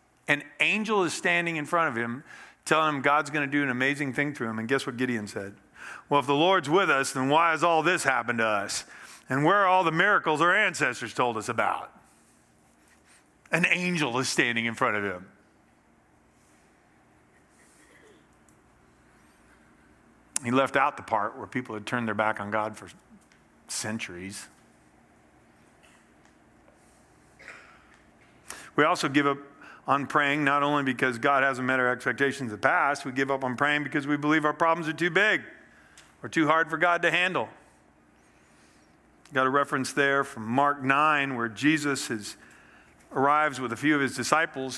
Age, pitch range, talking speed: 50-69, 115-150 Hz, 170 wpm